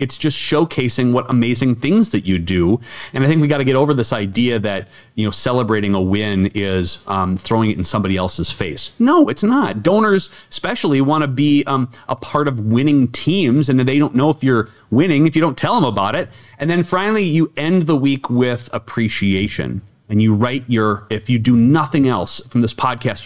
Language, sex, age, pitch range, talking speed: English, male, 30-49, 110-140 Hz, 210 wpm